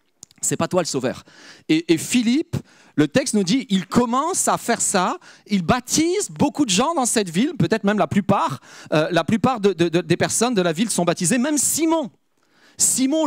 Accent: French